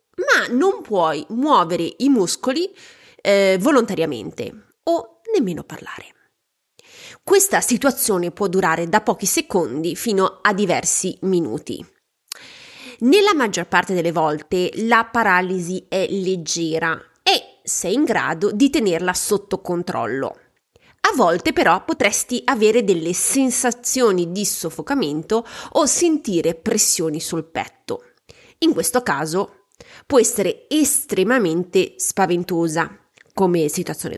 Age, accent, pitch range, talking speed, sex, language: 20-39, native, 175-275 Hz, 110 wpm, female, Italian